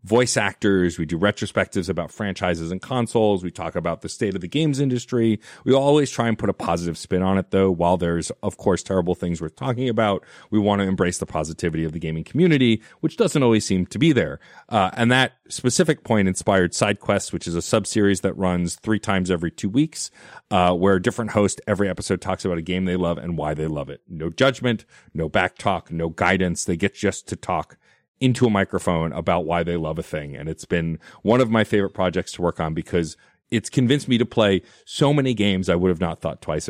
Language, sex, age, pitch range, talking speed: English, male, 30-49, 85-115 Hz, 225 wpm